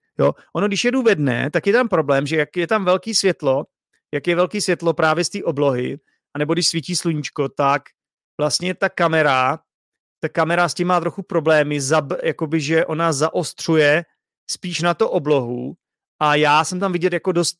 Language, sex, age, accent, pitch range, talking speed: Czech, male, 30-49, native, 145-175 Hz, 185 wpm